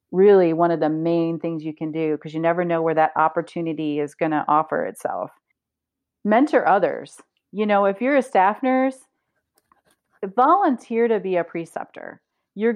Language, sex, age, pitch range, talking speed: English, female, 40-59, 170-220 Hz, 170 wpm